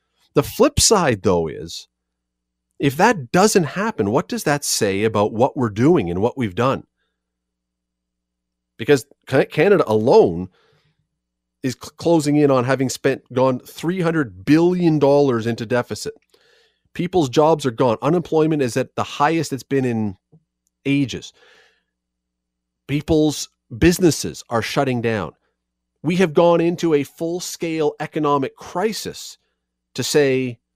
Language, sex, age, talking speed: English, male, 40-59, 125 wpm